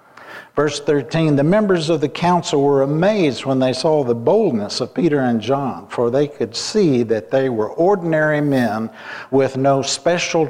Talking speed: 170 wpm